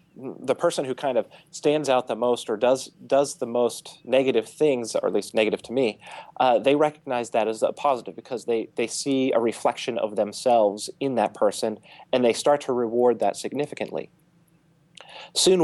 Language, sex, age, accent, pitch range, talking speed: English, male, 30-49, American, 110-140 Hz, 185 wpm